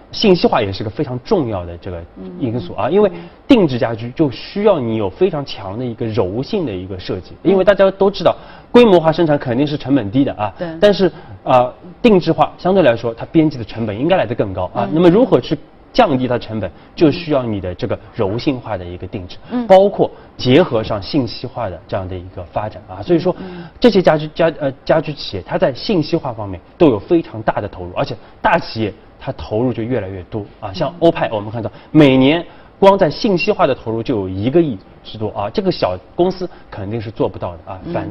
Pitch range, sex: 105-165 Hz, male